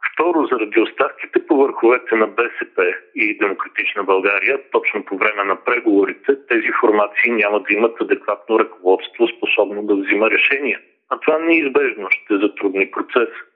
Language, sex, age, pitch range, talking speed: Bulgarian, male, 40-59, 330-415 Hz, 140 wpm